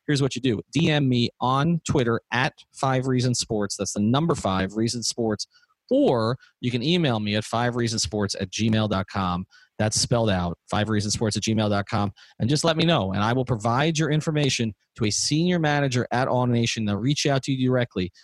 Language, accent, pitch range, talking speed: English, American, 105-135 Hz, 180 wpm